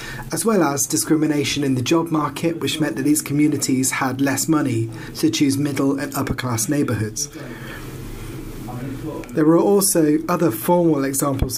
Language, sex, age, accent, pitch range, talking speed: English, male, 30-49, British, 125-155 Hz, 150 wpm